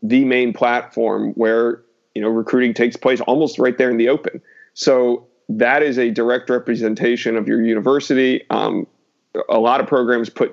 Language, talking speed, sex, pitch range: English, 170 wpm, male, 115-125 Hz